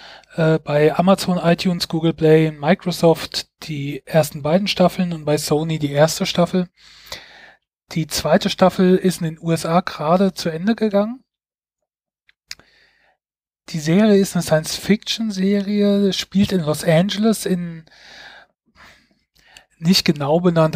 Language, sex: German, male